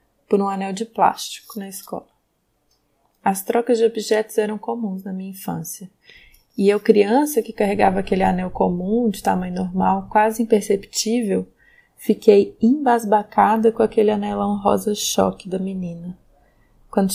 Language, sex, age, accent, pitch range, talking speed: Portuguese, female, 20-39, Brazilian, 190-230 Hz, 135 wpm